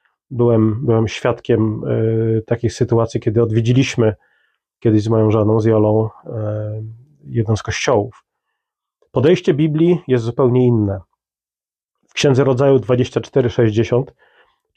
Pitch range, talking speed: 120-140 Hz, 100 wpm